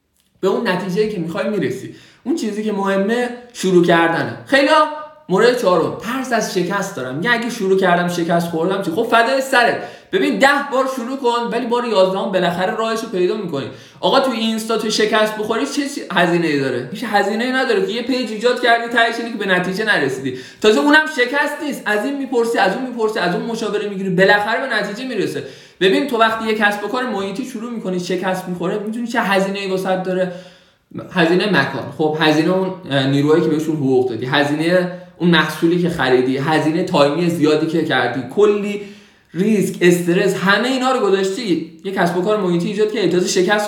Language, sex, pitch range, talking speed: Persian, male, 165-225 Hz, 185 wpm